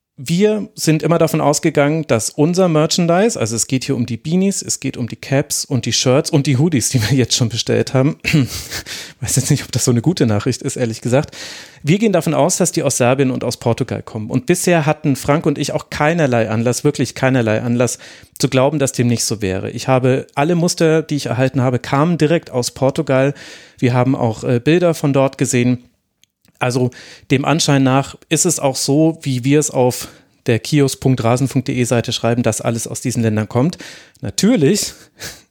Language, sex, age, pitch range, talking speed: German, male, 40-59, 120-145 Hz, 200 wpm